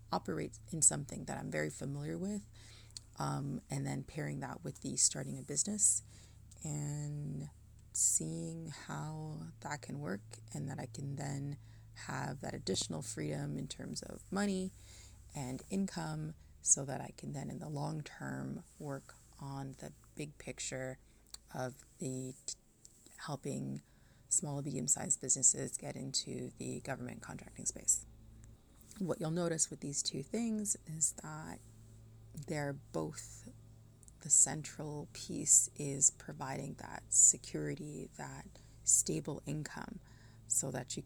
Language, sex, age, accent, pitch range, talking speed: English, female, 30-49, American, 110-160 Hz, 135 wpm